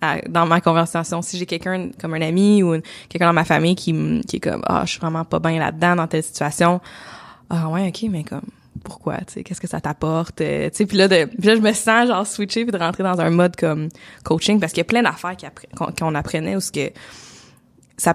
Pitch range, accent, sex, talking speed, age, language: 160-185 Hz, Canadian, female, 250 wpm, 20-39, French